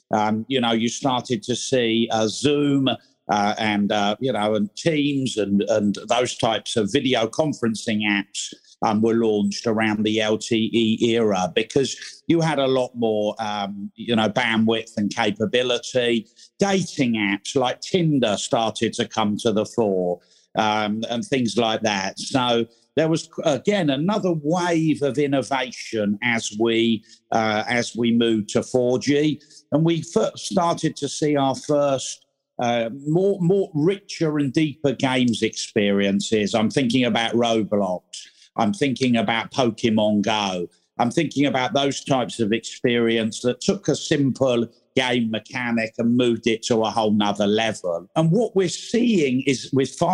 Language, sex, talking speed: English, male, 150 wpm